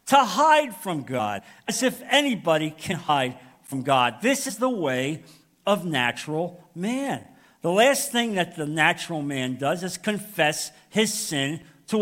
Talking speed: 155 wpm